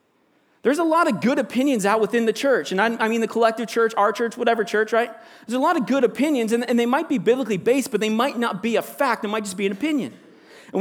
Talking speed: 260 wpm